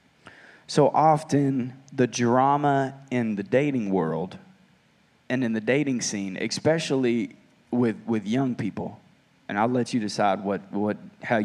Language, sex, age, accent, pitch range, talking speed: English, male, 20-39, American, 110-140 Hz, 135 wpm